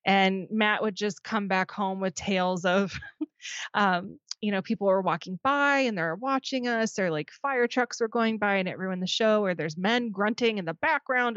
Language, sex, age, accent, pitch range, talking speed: English, female, 20-39, American, 180-215 Hz, 210 wpm